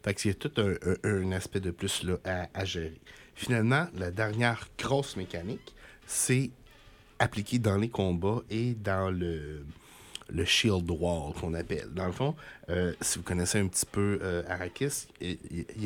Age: 60-79